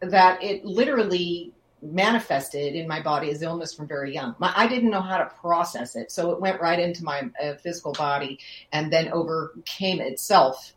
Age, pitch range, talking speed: 40-59, 165-200 Hz, 180 wpm